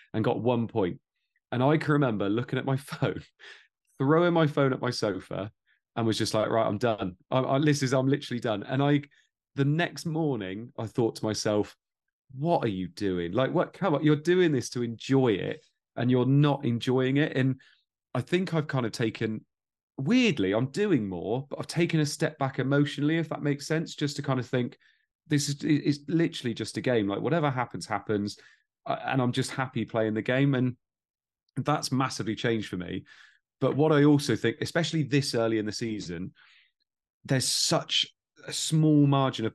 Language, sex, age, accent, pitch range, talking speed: English, male, 30-49, British, 115-145 Hz, 195 wpm